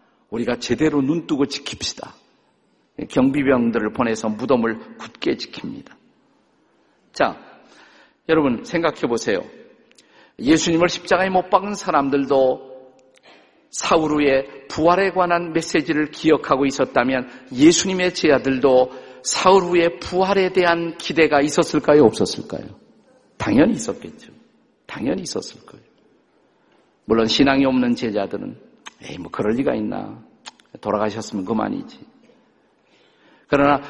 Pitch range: 135-190 Hz